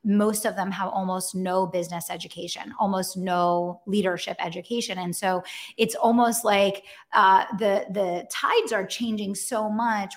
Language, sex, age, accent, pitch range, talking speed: English, female, 30-49, American, 185-220 Hz, 150 wpm